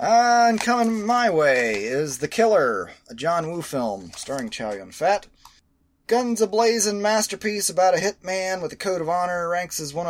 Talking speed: 170 wpm